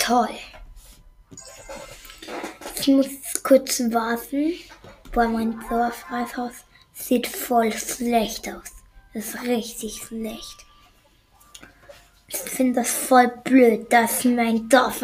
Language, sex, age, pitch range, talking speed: German, female, 10-29, 240-265 Hz, 90 wpm